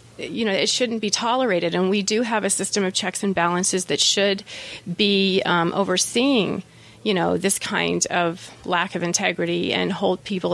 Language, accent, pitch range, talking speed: English, American, 175-205 Hz, 180 wpm